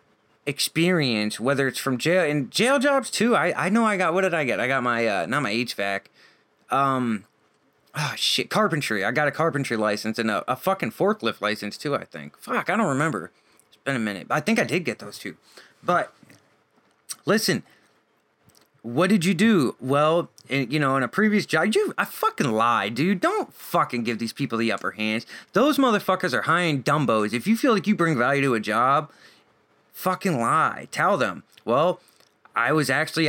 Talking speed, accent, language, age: 200 wpm, American, English, 30-49